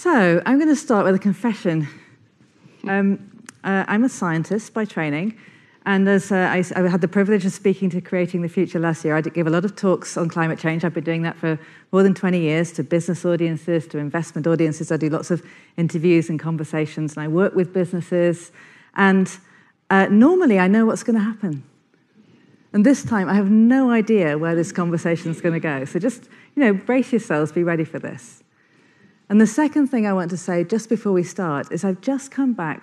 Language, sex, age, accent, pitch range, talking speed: English, female, 40-59, British, 160-195 Hz, 215 wpm